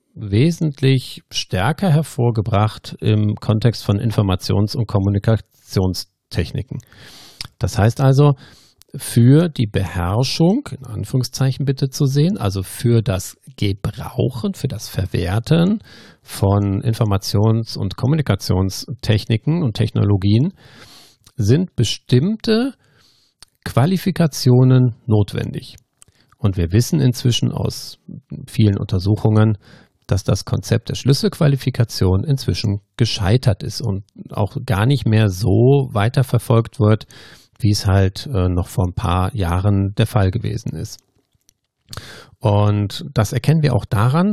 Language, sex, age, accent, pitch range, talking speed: German, male, 50-69, German, 105-135 Hz, 105 wpm